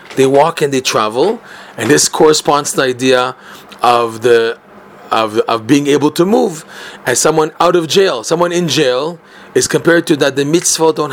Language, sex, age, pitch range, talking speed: English, male, 30-49, 130-155 Hz, 185 wpm